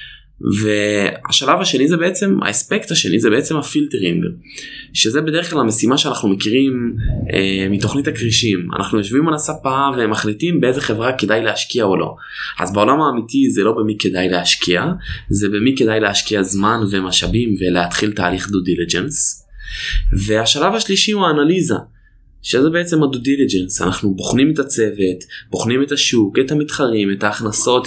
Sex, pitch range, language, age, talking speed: male, 100-145 Hz, Hebrew, 20-39, 140 wpm